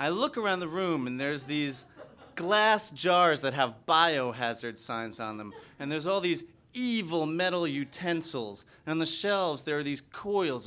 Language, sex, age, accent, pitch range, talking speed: English, male, 30-49, American, 145-200 Hz, 175 wpm